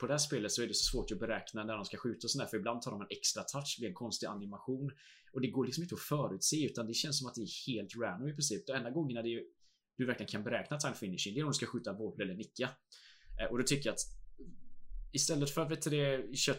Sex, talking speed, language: male, 280 wpm, Swedish